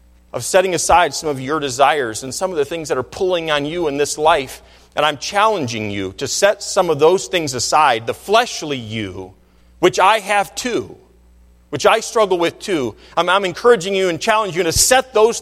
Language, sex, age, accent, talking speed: English, male, 40-59, American, 205 wpm